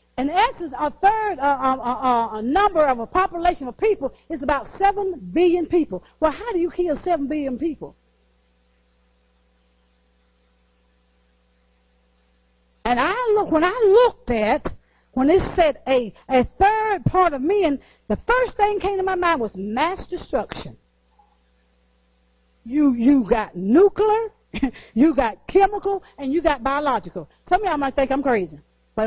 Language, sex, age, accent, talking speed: English, female, 40-59, American, 150 wpm